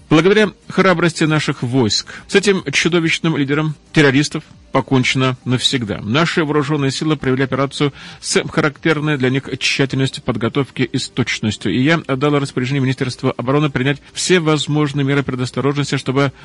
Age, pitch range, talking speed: 40-59, 125-155 Hz, 130 wpm